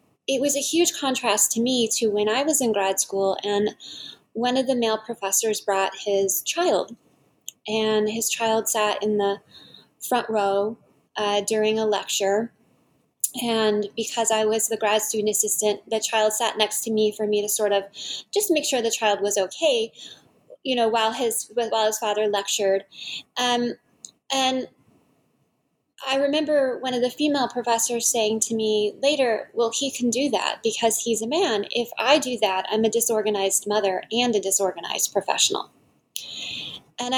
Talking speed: 170 wpm